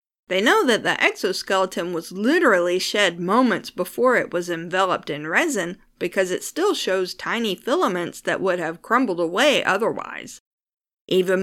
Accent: American